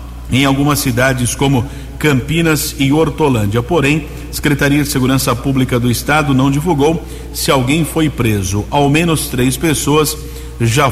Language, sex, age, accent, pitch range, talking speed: Portuguese, male, 50-69, Brazilian, 130-150 Hz, 135 wpm